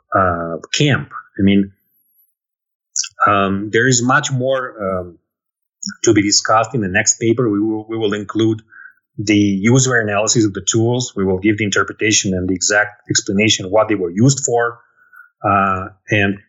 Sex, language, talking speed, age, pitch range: male, English, 165 wpm, 30-49, 105-135 Hz